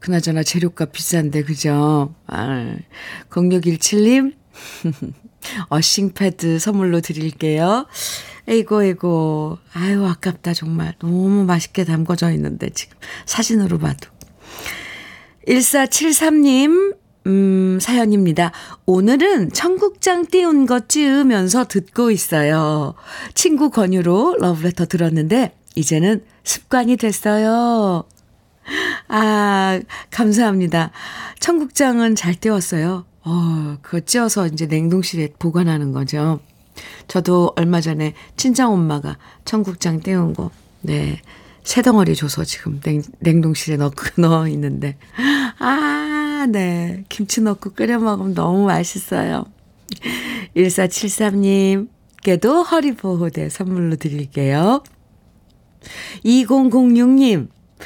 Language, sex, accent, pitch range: Korean, female, native, 165-230 Hz